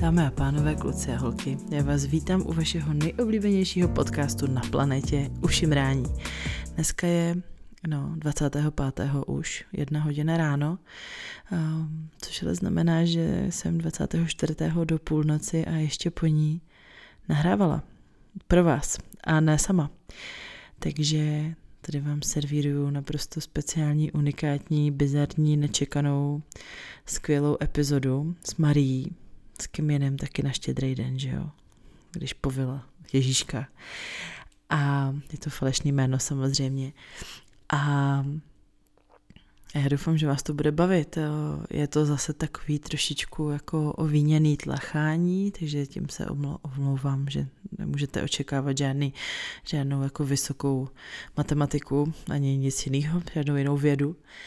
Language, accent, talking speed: Czech, native, 120 wpm